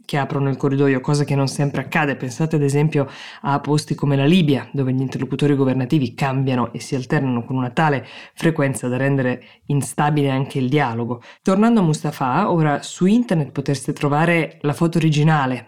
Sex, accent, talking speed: female, native, 175 wpm